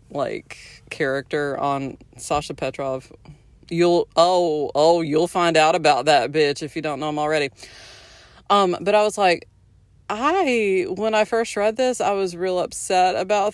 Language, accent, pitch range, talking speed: English, American, 145-185 Hz, 160 wpm